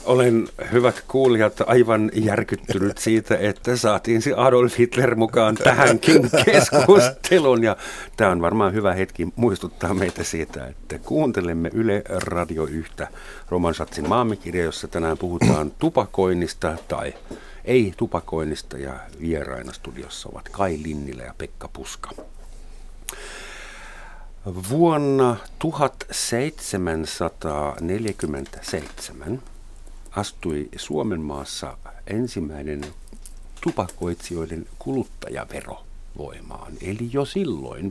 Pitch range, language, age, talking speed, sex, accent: 80-120 Hz, Finnish, 50-69, 85 wpm, male, native